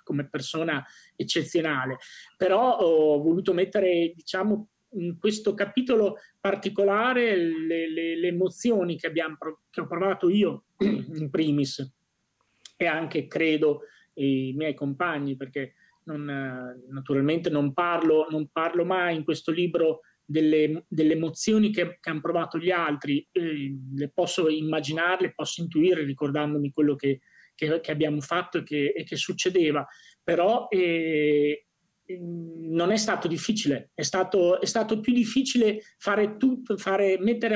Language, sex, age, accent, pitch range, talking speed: Italian, male, 30-49, native, 155-195 Hz, 135 wpm